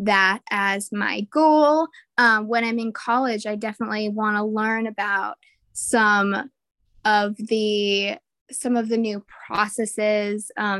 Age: 20-39